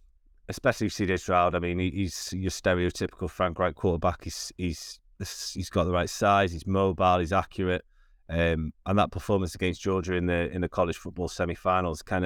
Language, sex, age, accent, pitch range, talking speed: English, male, 30-49, British, 85-100 Hz, 175 wpm